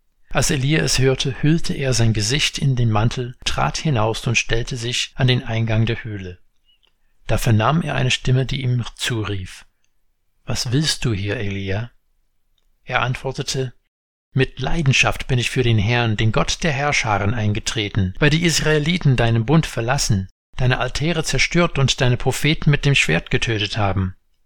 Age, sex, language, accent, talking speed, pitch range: 60-79, male, German, German, 160 wpm, 110-140 Hz